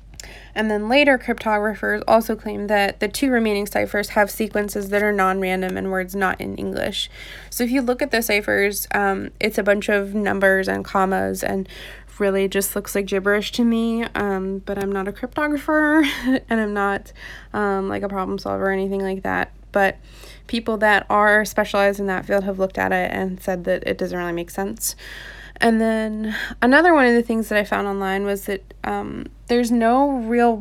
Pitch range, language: 195-230 Hz, English